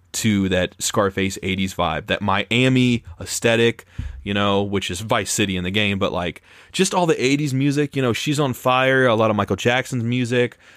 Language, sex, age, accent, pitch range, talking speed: English, male, 30-49, American, 95-130 Hz, 195 wpm